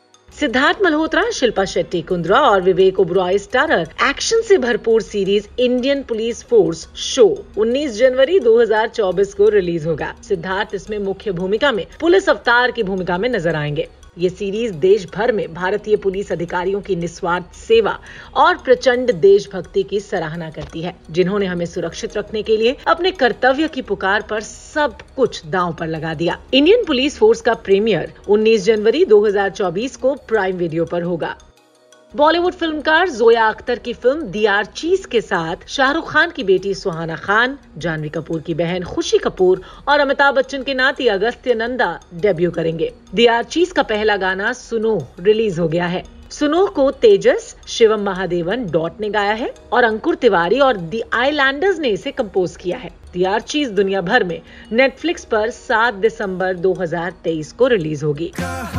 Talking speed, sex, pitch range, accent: 165 wpm, female, 185-275 Hz, native